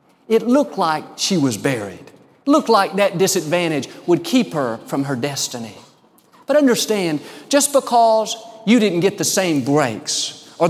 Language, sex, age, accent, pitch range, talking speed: English, male, 50-69, American, 160-220 Hz, 150 wpm